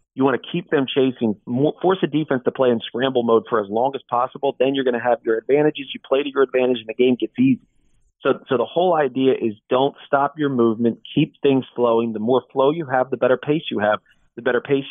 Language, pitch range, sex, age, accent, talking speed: English, 120-145 Hz, male, 40-59, American, 250 wpm